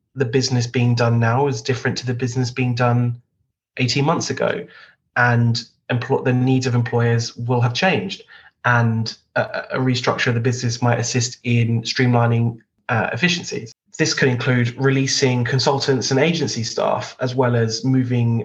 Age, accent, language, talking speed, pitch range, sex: 20-39, British, English, 155 wpm, 115-130 Hz, male